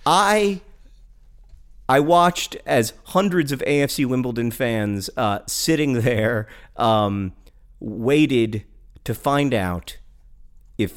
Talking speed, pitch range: 100 wpm, 95-120 Hz